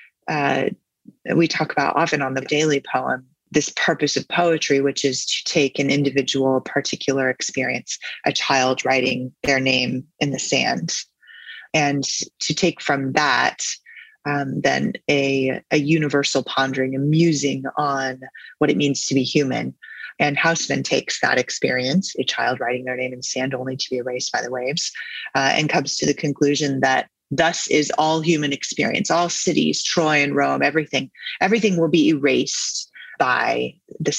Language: English